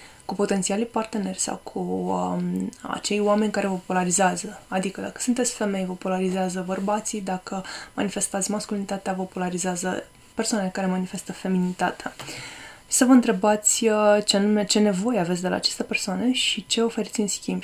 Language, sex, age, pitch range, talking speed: Romanian, female, 20-39, 185-215 Hz, 155 wpm